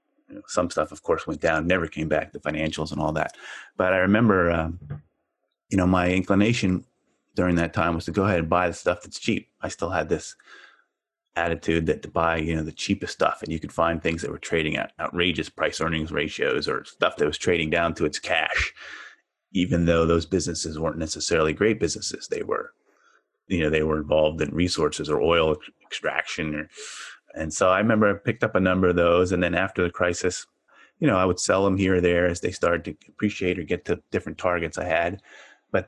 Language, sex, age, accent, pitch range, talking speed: English, male, 30-49, American, 80-95 Hz, 215 wpm